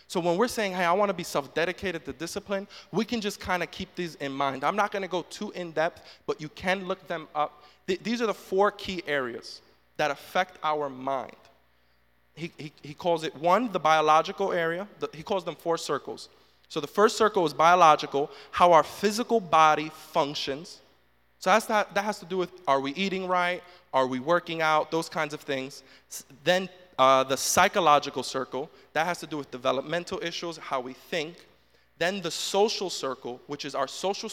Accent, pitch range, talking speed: American, 135-180 Hz, 200 wpm